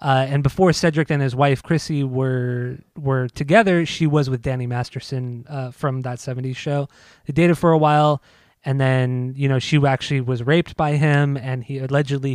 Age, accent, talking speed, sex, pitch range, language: 20-39, American, 190 wpm, male, 130-150 Hz, English